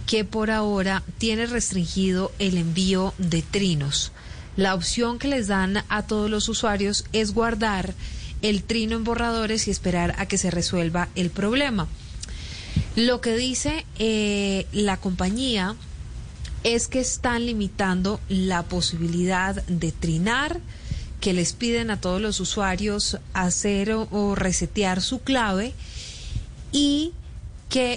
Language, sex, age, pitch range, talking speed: Spanish, female, 30-49, 185-220 Hz, 130 wpm